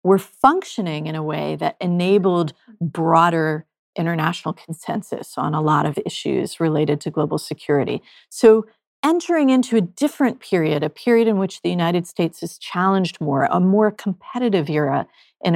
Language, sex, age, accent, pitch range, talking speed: English, female, 40-59, American, 165-230 Hz, 155 wpm